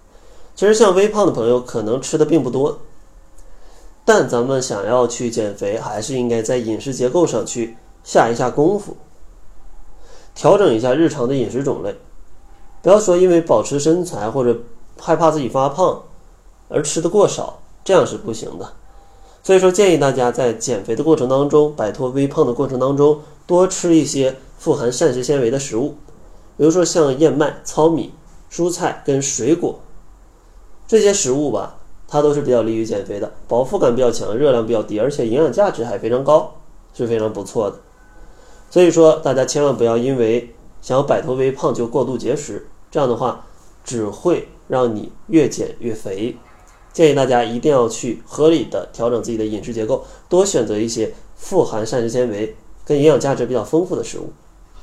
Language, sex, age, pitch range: Chinese, male, 20-39, 115-160 Hz